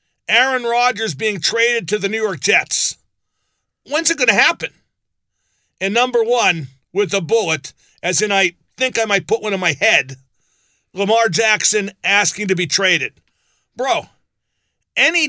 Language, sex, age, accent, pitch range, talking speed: English, male, 50-69, American, 190-235 Hz, 155 wpm